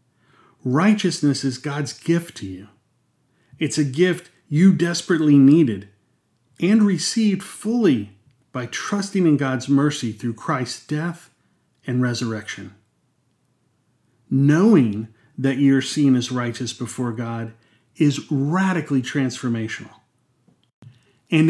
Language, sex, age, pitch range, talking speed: English, male, 40-59, 120-160 Hz, 105 wpm